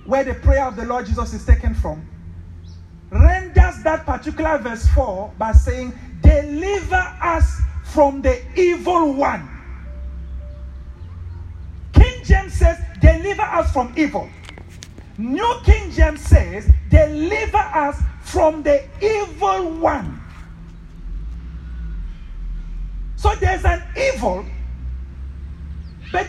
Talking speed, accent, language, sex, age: 105 wpm, Nigerian, English, male, 40-59